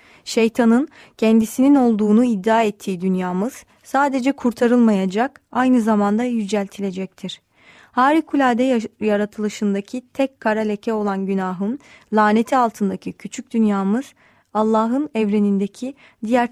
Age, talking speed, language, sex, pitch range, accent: 30-49, 90 wpm, Turkish, female, 205-250 Hz, native